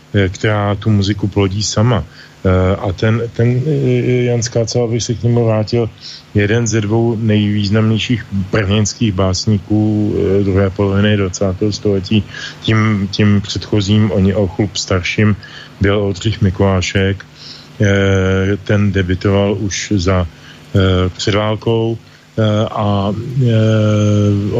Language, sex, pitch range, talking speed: English, male, 95-110 Hz, 110 wpm